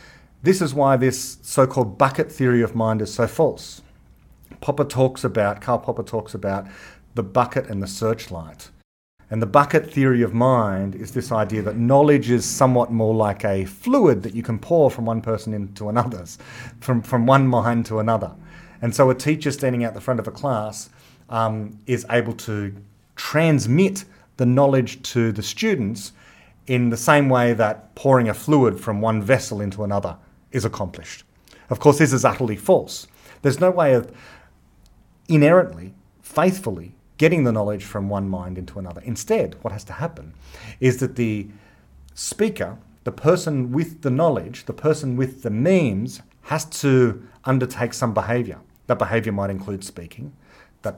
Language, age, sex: English, 40-59, male